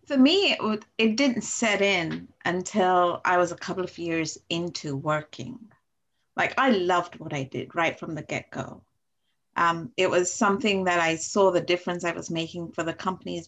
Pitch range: 175-235 Hz